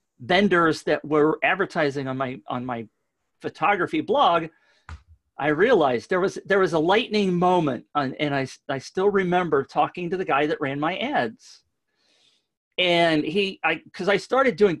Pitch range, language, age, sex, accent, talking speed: 150-235 Hz, English, 40-59, male, American, 160 wpm